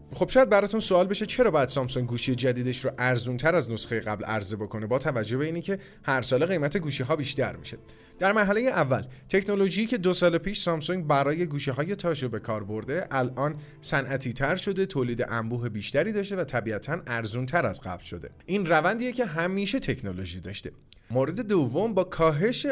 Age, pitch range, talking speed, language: 30-49, 125-195 Hz, 190 wpm, Persian